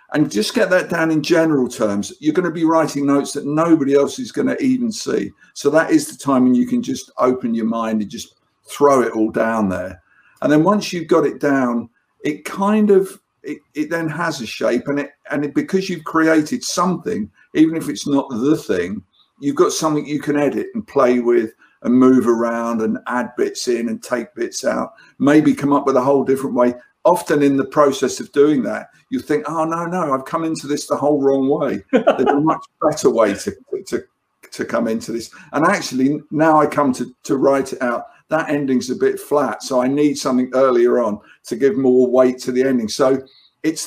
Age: 50-69